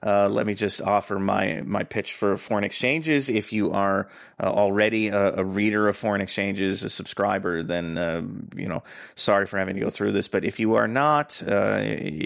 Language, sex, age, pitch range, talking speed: English, male, 30-49, 100-120 Hz, 200 wpm